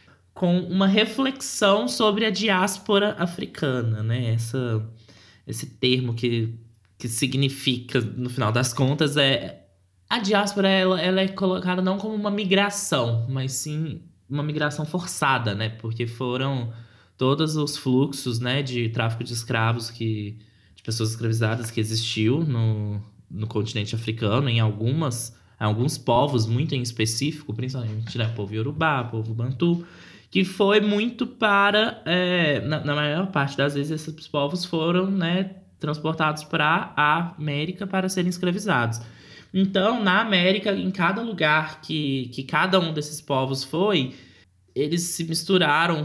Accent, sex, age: Brazilian, male, 10-29